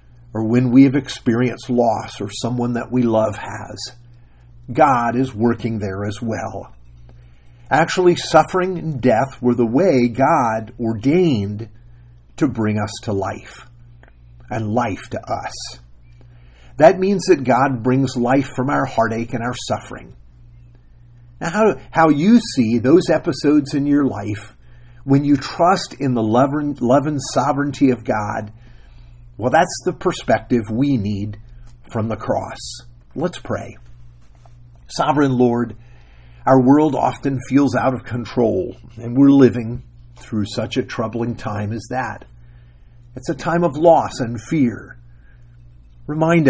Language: English